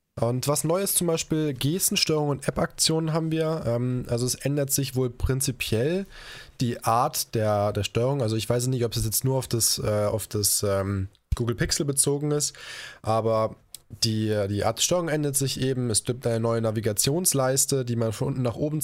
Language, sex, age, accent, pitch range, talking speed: German, male, 20-39, German, 115-140 Hz, 180 wpm